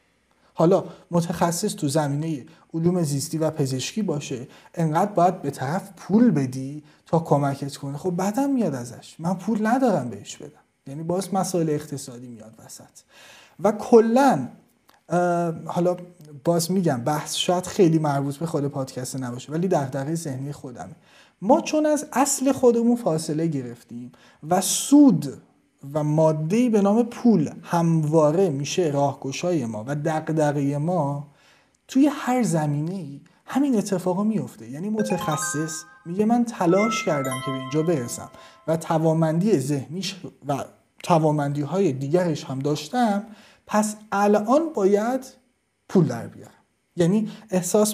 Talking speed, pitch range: 135 wpm, 145-210 Hz